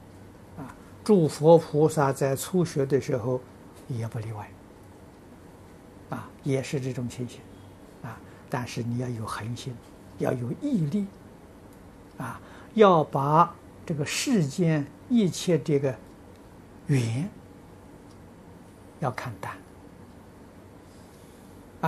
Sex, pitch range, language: male, 95-155 Hz, Chinese